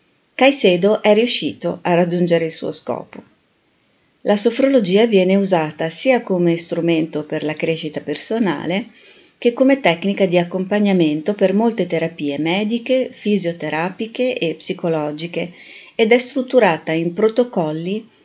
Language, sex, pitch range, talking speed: Italian, female, 155-195 Hz, 120 wpm